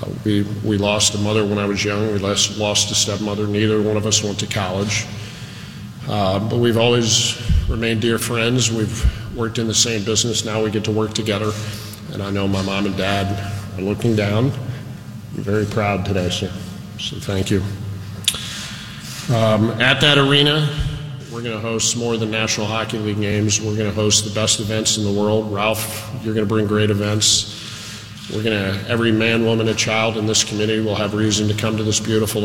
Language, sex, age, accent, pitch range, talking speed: English, male, 40-59, American, 100-110 Hz, 205 wpm